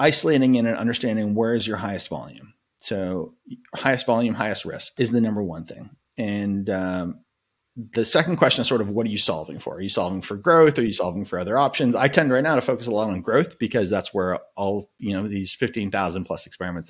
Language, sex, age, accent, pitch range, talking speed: English, male, 30-49, American, 95-120 Hz, 225 wpm